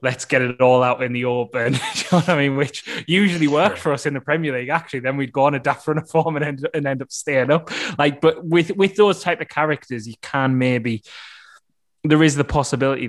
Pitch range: 115-150 Hz